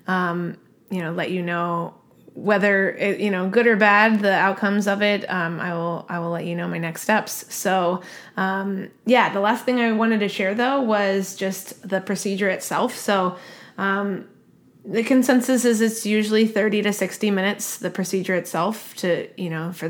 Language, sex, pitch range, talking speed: English, female, 180-210 Hz, 185 wpm